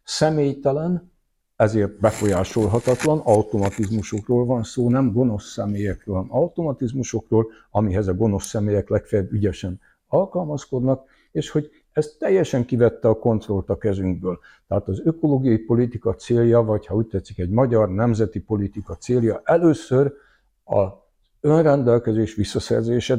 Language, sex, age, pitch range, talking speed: Hungarian, male, 60-79, 105-140 Hz, 115 wpm